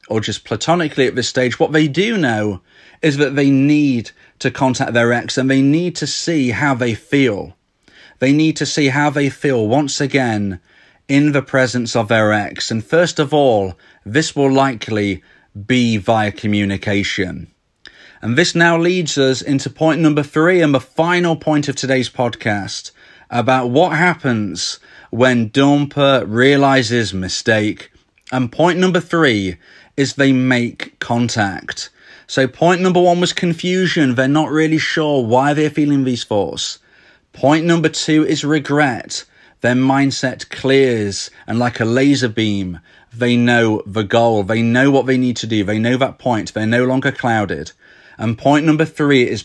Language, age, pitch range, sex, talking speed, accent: English, 30-49, 115-150 Hz, male, 165 wpm, British